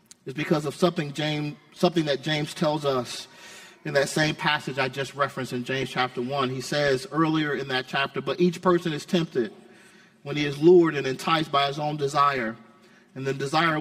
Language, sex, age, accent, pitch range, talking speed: English, male, 40-59, American, 140-185 Hz, 195 wpm